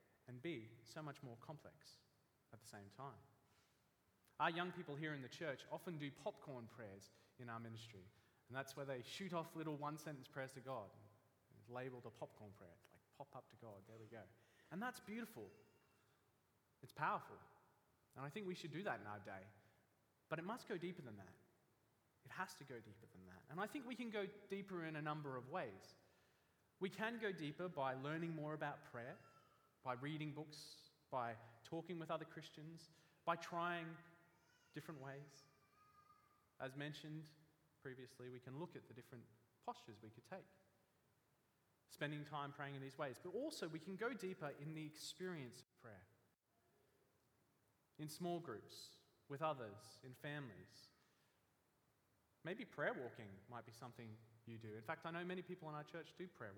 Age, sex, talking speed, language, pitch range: 30-49, male, 175 wpm, English, 115-165 Hz